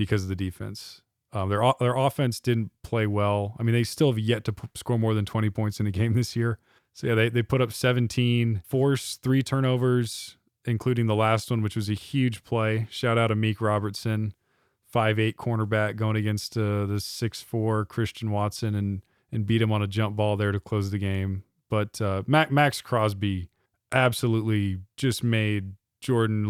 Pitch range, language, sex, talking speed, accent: 100-115 Hz, English, male, 190 wpm, American